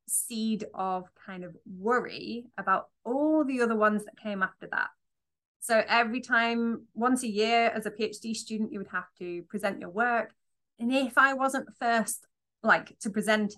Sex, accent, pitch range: female, British, 210-250 Hz